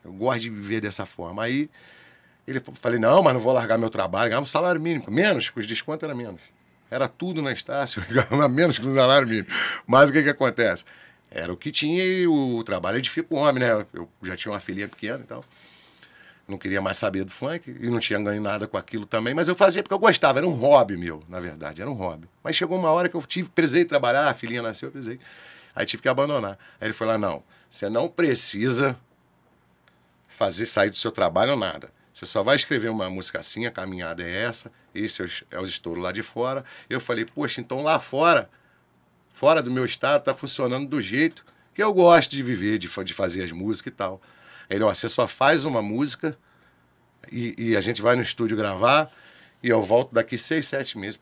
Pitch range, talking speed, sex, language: 100-145 Hz, 225 wpm, male, Portuguese